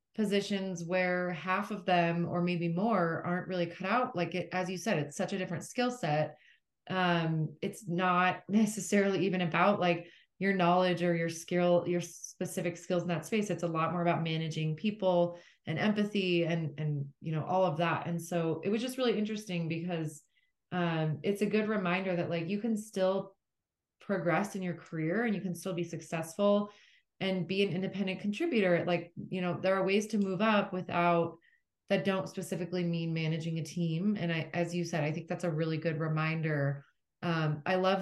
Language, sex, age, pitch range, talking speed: English, female, 20-39, 165-190 Hz, 195 wpm